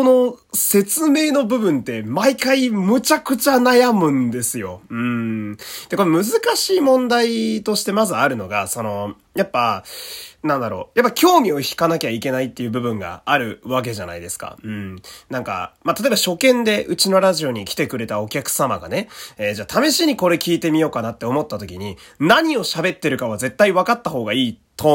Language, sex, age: Japanese, male, 30-49